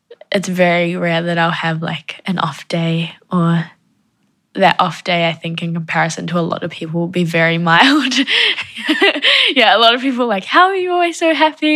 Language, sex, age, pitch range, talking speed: English, female, 10-29, 175-210 Hz, 205 wpm